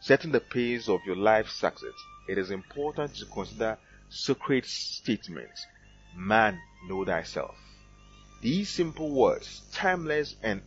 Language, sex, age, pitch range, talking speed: English, male, 30-49, 105-150 Hz, 125 wpm